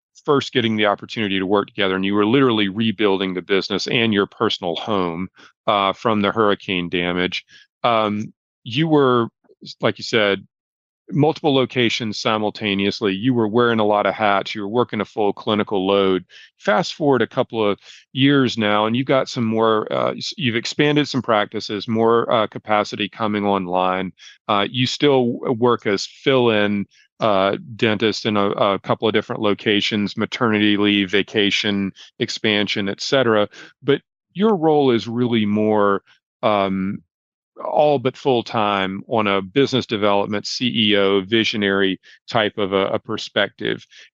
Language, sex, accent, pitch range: English, male, American, 100-120 Hz